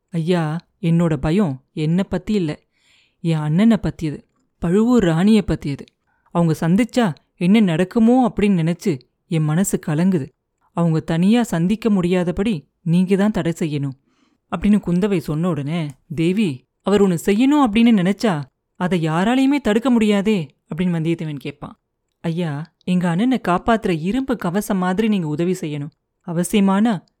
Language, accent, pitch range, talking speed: Tamil, native, 165-215 Hz, 125 wpm